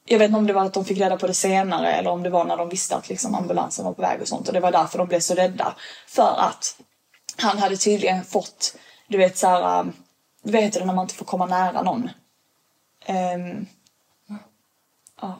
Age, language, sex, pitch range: 10-29, Swedish, female, 195-235 Hz